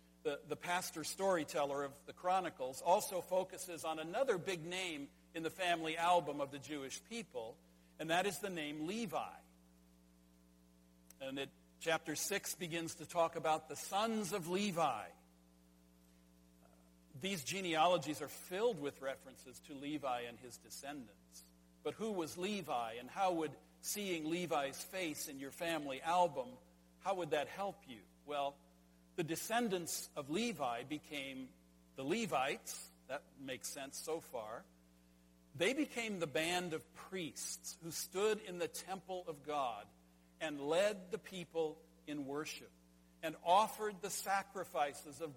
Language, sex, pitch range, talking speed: English, male, 120-185 Hz, 140 wpm